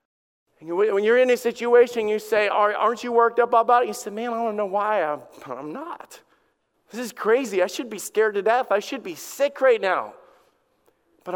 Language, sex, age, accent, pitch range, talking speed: English, male, 40-59, American, 150-220 Hz, 200 wpm